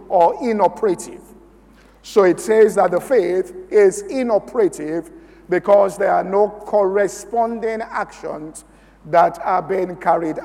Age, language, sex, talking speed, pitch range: 50-69, English, male, 115 wpm, 195-270 Hz